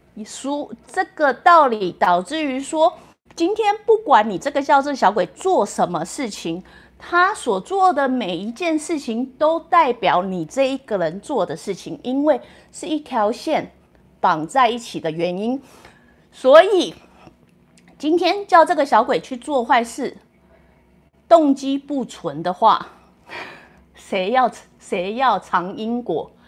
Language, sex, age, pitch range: English, female, 30-49, 185-275 Hz